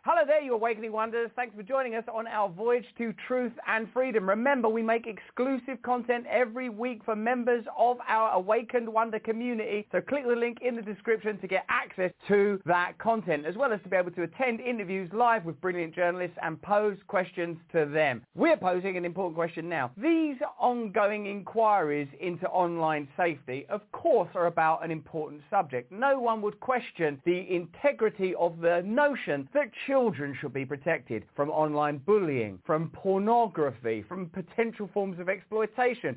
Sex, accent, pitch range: male, British, 165-225 Hz